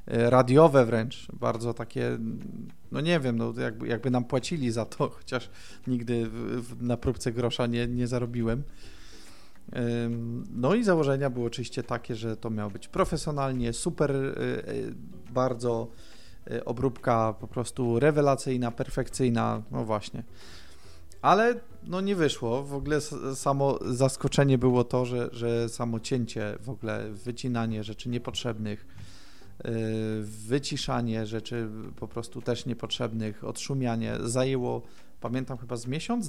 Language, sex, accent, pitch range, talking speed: Polish, male, native, 115-135 Hz, 120 wpm